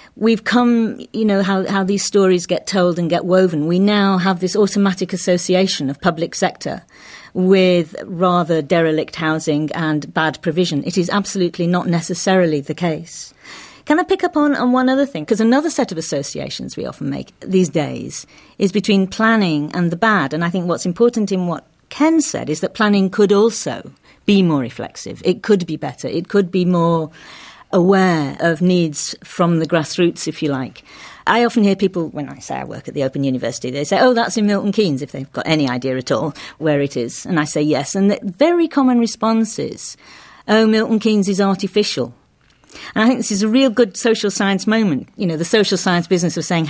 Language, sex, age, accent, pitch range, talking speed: English, female, 50-69, British, 160-220 Hz, 205 wpm